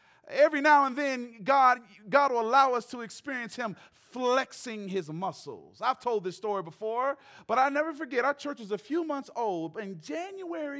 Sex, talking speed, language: male, 185 wpm, English